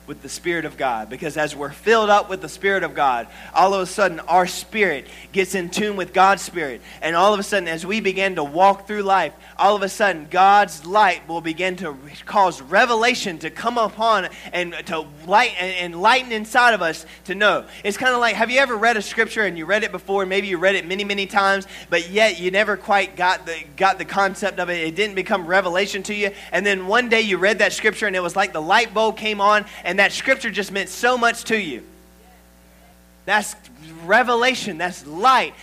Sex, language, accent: male, English, American